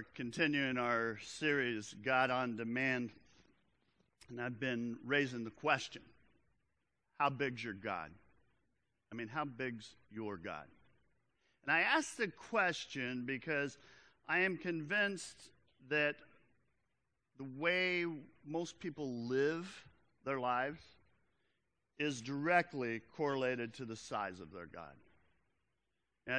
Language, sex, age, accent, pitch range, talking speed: English, male, 50-69, American, 125-165 Hz, 110 wpm